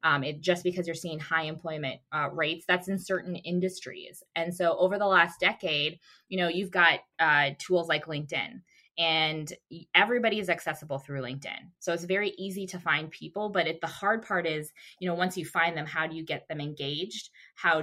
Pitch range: 155-185 Hz